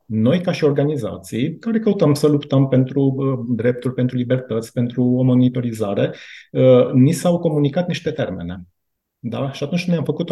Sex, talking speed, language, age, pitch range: male, 165 wpm, Romanian, 30-49, 110-135 Hz